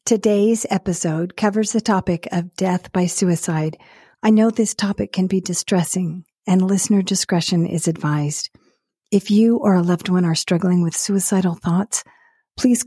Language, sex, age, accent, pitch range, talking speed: English, female, 40-59, American, 170-205 Hz, 155 wpm